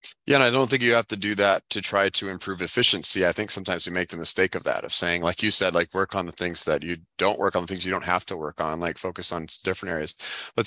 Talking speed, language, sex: 300 wpm, English, male